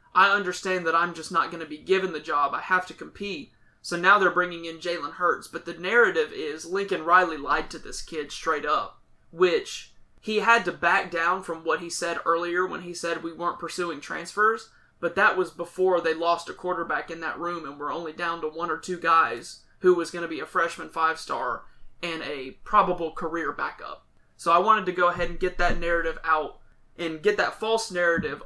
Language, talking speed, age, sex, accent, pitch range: English, 215 wpm, 30-49, male, American, 165-185 Hz